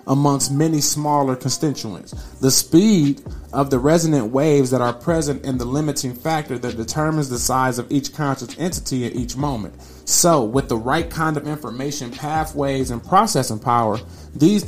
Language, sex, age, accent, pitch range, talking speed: English, male, 30-49, American, 125-150 Hz, 165 wpm